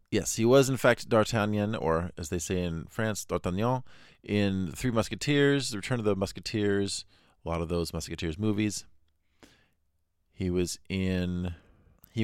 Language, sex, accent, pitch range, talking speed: English, male, American, 85-105 Hz, 150 wpm